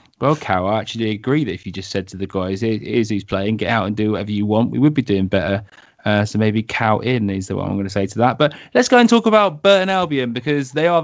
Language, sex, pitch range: English, male, 120-145 Hz